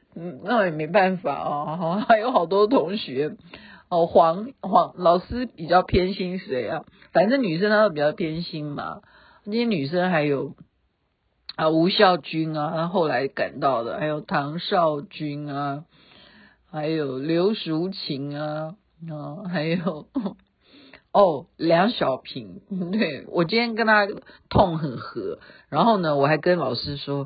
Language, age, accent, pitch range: Chinese, 50-69, native, 150-220 Hz